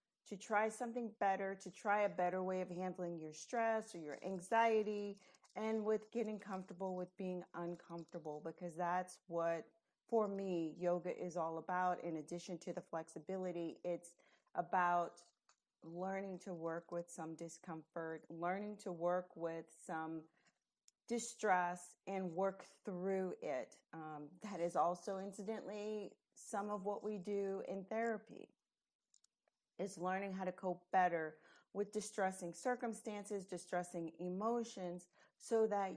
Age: 40-59